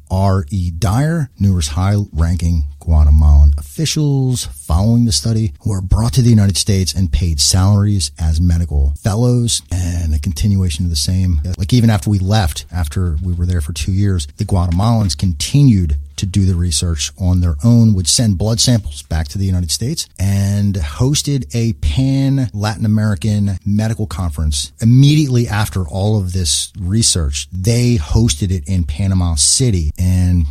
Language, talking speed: English, 155 wpm